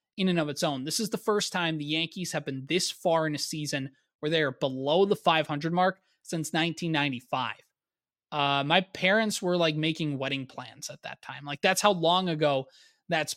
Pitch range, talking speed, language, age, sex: 145-185 Hz, 200 wpm, English, 20-39, male